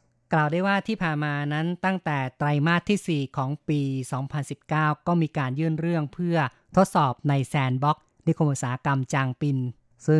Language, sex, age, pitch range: Thai, female, 20-39, 130-160 Hz